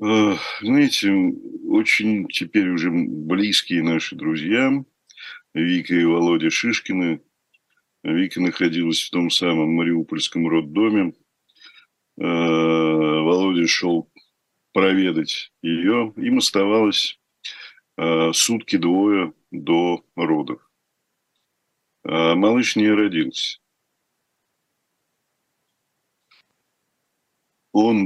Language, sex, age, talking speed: Russian, male, 50-69, 65 wpm